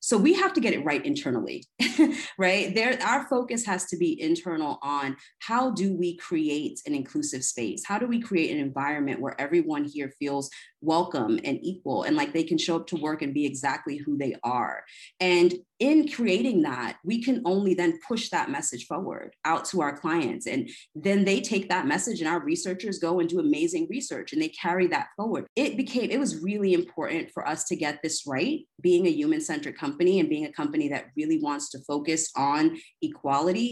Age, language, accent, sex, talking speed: 30-49, English, American, female, 200 wpm